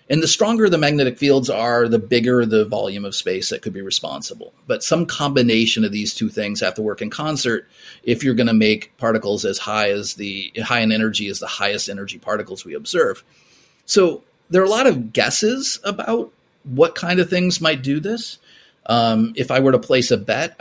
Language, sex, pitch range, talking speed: English, male, 110-145 Hz, 210 wpm